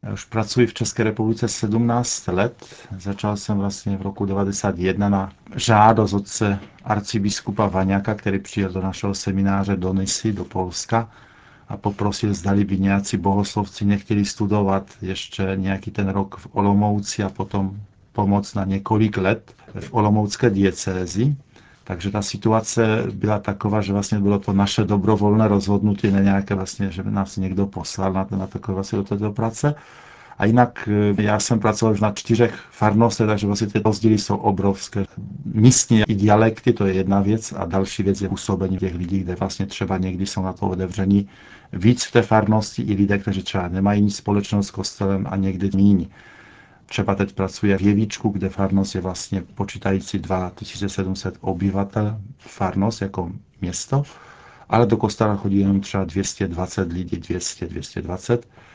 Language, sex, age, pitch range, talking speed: Czech, male, 50-69, 95-110 Hz, 155 wpm